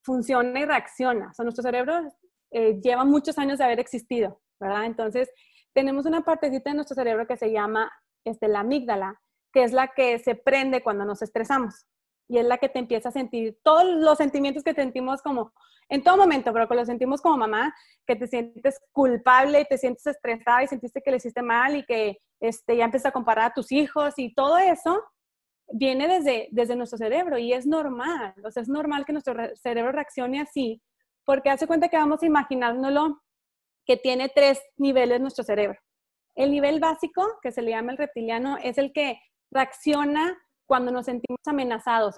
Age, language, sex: 30-49, Spanish, female